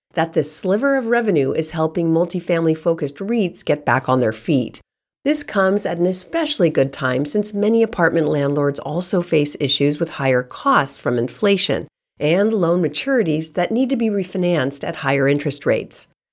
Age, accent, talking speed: 50-69, American, 165 wpm